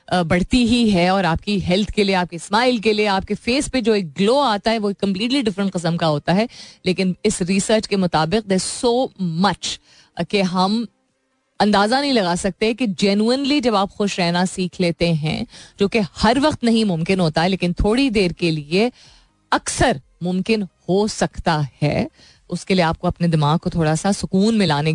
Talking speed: 190 wpm